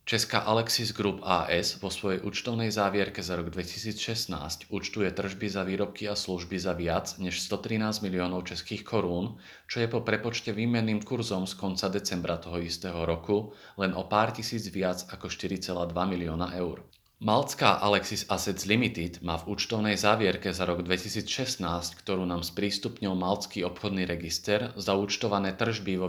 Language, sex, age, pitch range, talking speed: Slovak, male, 40-59, 90-105 Hz, 150 wpm